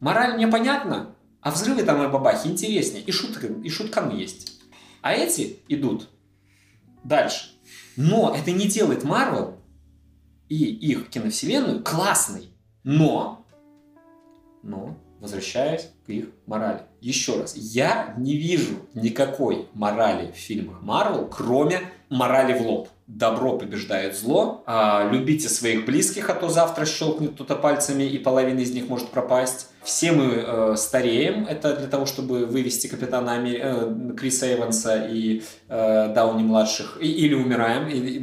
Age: 20-39